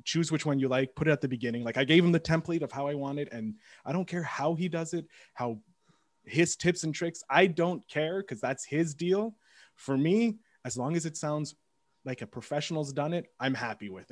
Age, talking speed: 20-39, 240 wpm